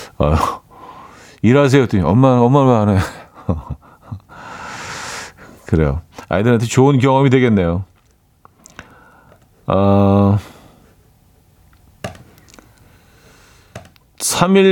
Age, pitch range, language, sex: 40-59, 90-130 Hz, Korean, male